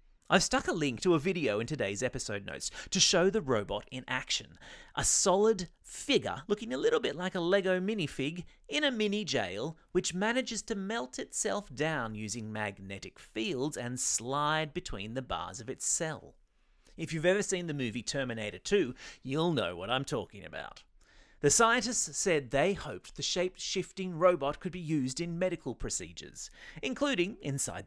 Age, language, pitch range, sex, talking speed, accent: 30-49, English, 130-205 Hz, male, 170 wpm, Australian